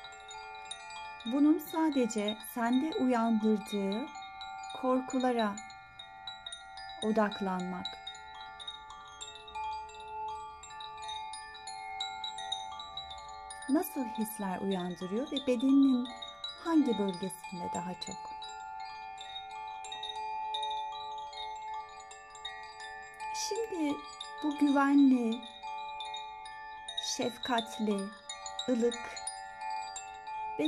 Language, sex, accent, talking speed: Turkish, female, native, 40 wpm